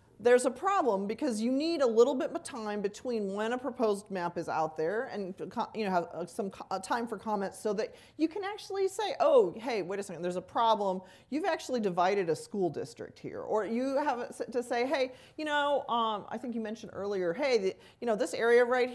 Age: 40-59